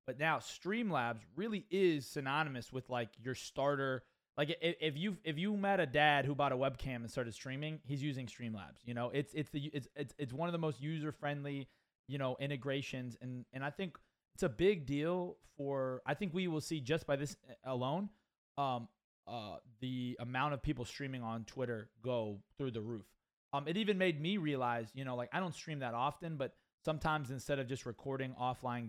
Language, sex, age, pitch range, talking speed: English, male, 20-39, 125-160 Hz, 200 wpm